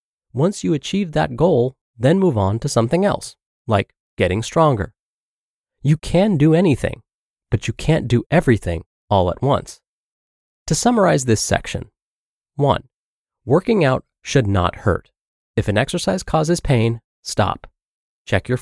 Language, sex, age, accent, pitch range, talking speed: English, male, 30-49, American, 110-155 Hz, 140 wpm